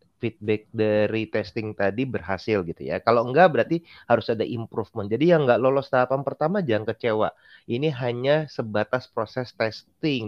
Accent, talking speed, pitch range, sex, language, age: native, 150 wpm, 110-135 Hz, male, Indonesian, 30-49